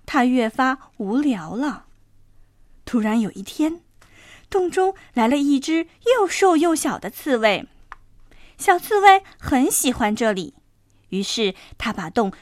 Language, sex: Chinese, female